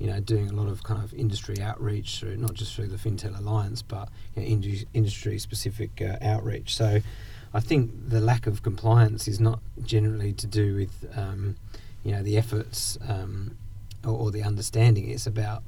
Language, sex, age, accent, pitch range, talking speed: English, male, 40-59, British, 100-110 Hz, 180 wpm